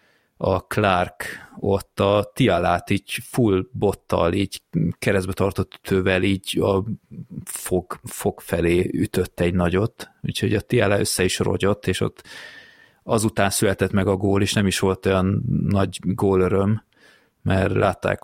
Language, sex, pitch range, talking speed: Hungarian, male, 95-110 Hz, 140 wpm